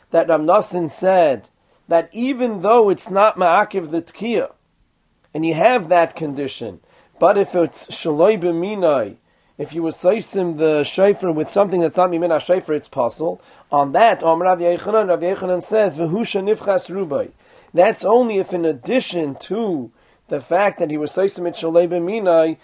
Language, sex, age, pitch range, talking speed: English, male, 40-59, 170-200 Hz, 160 wpm